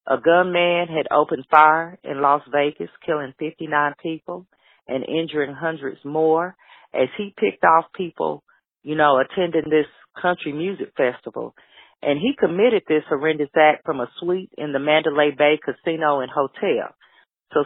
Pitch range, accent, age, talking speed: 135-165 Hz, American, 40-59, 150 wpm